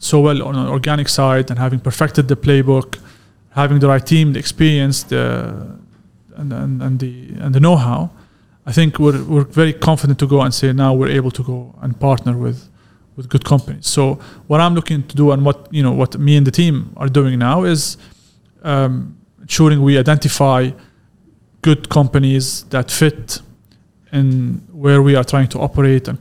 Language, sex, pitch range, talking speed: Arabic, male, 130-150 Hz, 185 wpm